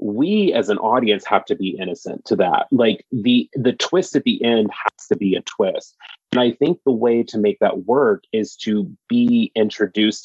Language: English